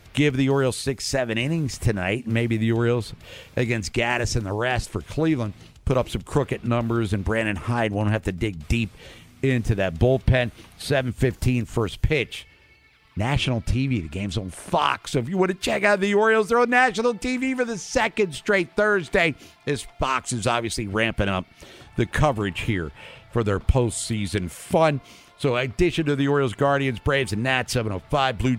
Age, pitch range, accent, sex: 50-69, 110-145 Hz, American, male